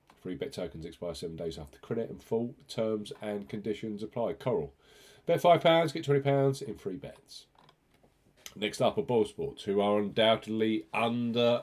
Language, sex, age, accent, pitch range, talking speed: English, male, 40-59, British, 90-130 Hz, 160 wpm